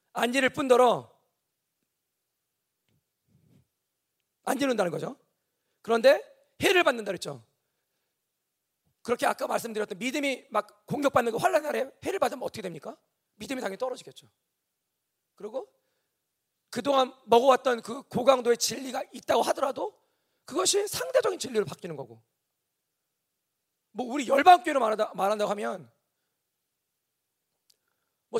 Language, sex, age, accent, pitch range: Korean, male, 40-59, native, 190-280 Hz